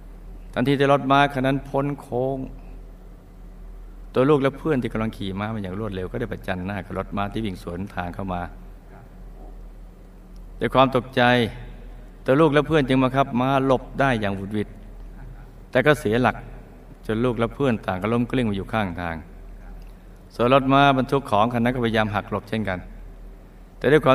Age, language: 60-79, Thai